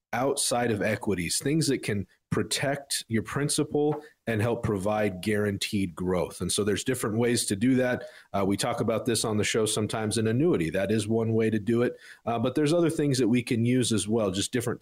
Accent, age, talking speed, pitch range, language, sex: American, 40-59, 220 wpm, 100-120 Hz, English, male